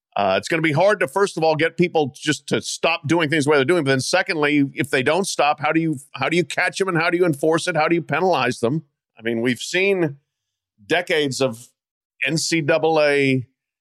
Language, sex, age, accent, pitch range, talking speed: English, male, 50-69, American, 135-170 Hz, 235 wpm